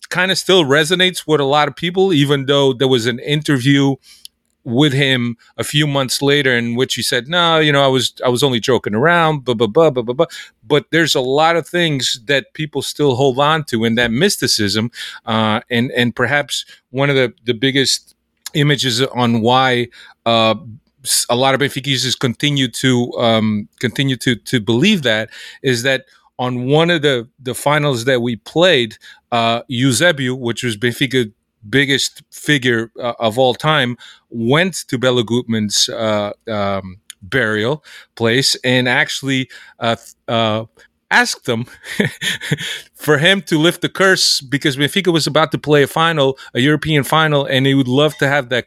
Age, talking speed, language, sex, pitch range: 30-49, 180 wpm, Hebrew, male, 120-145 Hz